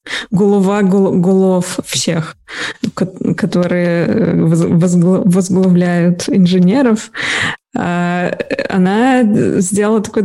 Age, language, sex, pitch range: 20-39, Russian, female, 180-205 Hz